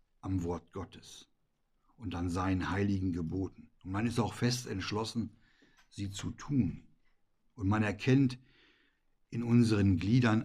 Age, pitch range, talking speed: 60-79, 90-115 Hz, 130 wpm